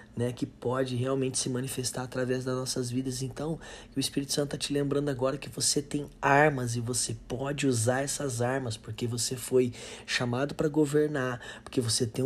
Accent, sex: Brazilian, male